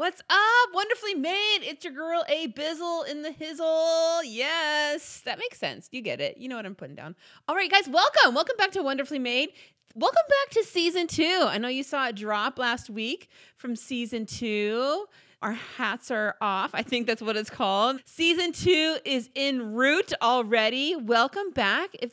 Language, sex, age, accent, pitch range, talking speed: English, female, 30-49, American, 215-305 Hz, 185 wpm